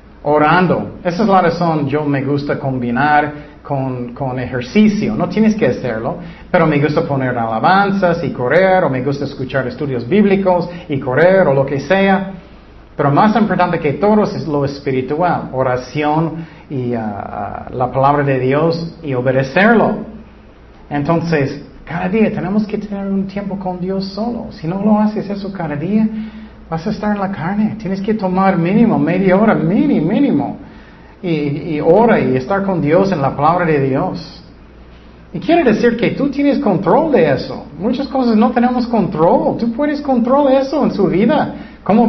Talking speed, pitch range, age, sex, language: 170 wpm, 150-215 Hz, 40-59, male, Spanish